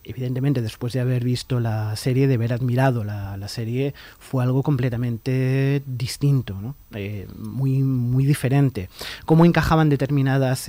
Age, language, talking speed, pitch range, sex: 30-49, Spanish, 140 wpm, 125-160 Hz, male